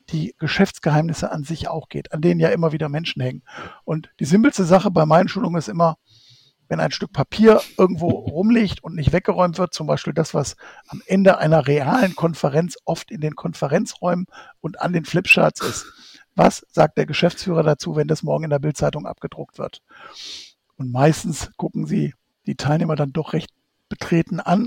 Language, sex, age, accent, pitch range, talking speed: German, male, 60-79, German, 155-190 Hz, 180 wpm